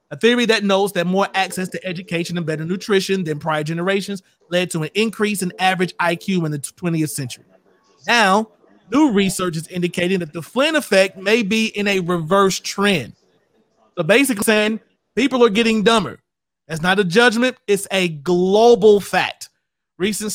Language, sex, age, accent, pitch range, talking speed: English, male, 30-49, American, 170-205 Hz, 170 wpm